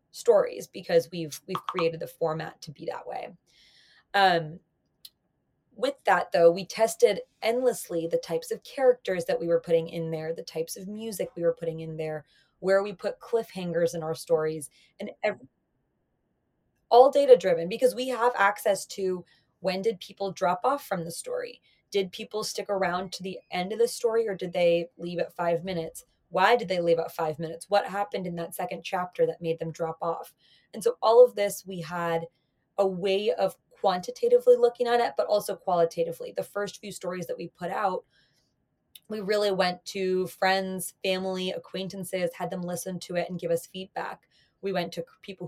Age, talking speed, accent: 20-39, 185 wpm, American